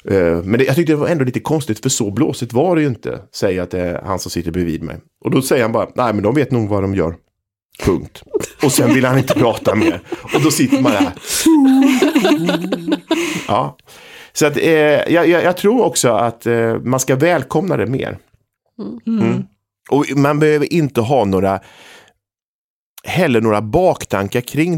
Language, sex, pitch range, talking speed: English, male, 95-140 Hz, 185 wpm